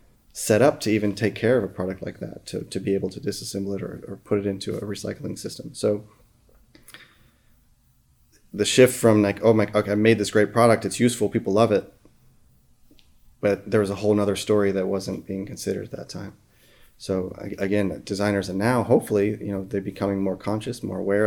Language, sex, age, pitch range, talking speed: English, male, 30-49, 95-110 Hz, 205 wpm